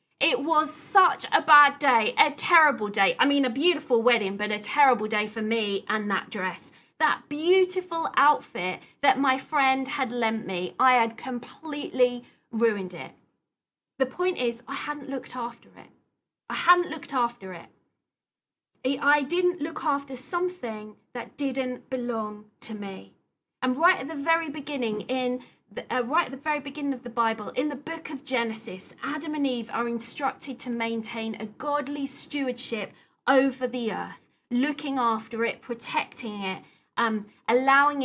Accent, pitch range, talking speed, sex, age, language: British, 230-290 Hz, 160 wpm, female, 40-59, English